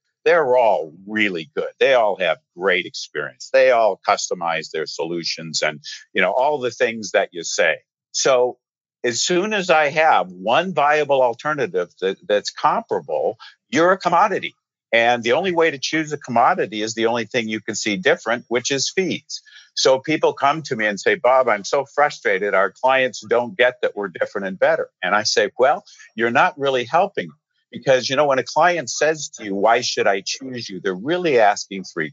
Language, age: English, 50-69